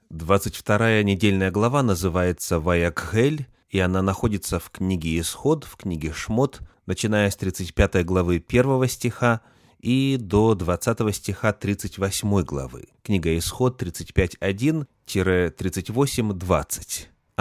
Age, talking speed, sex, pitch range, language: 30-49, 100 wpm, male, 90-115 Hz, Russian